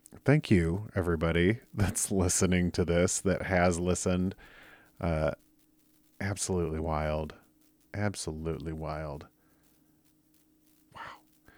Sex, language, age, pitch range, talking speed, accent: male, English, 40-59, 90-120 Hz, 85 wpm, American